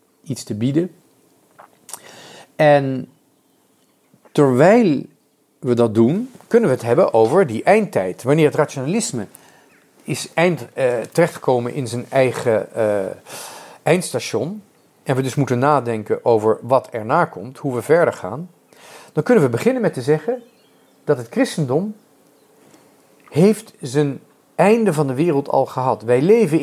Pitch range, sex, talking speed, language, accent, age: 135-190 Hz, male, 135 wpm, Dutch, Dutch, 40-59